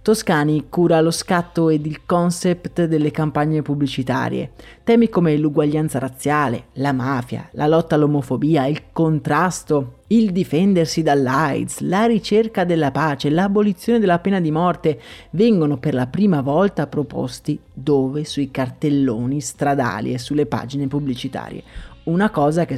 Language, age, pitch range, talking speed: Italian, 30-49, 135-175 Hz, 130 wpm